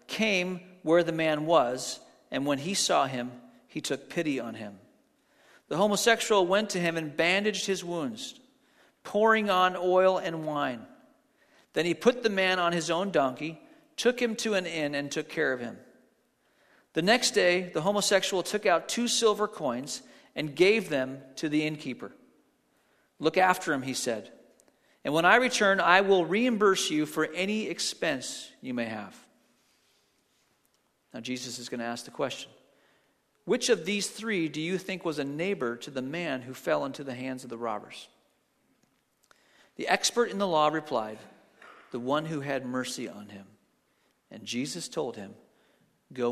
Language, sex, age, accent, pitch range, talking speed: English, male, 40-59, American, 140-200 Hz, 170 wpm